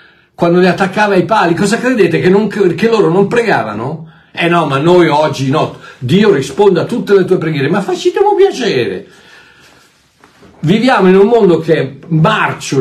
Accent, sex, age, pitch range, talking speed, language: native, male, 60-79, 130-195 Hz, 170 wpm, Italian